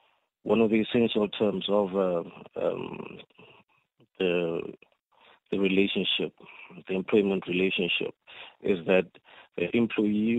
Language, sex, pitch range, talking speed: English, male, 95-110 Hz, 105 wpm